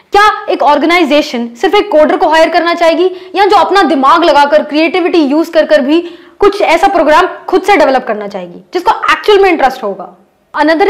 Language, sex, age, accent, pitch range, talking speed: Hindi, female, 20-39, native, 275-355 Hz, 180 wpm